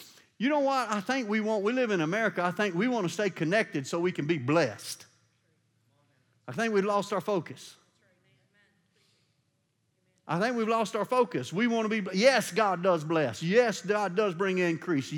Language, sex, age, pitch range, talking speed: English, male, 50-69, 170-225 Hz, 190 wpm